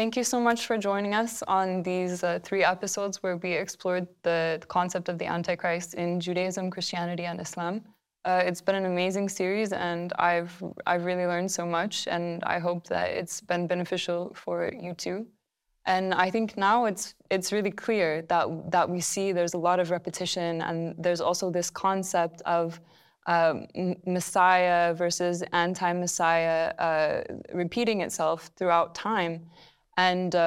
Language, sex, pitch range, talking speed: English, female, 170-185 Hz, 160 wpm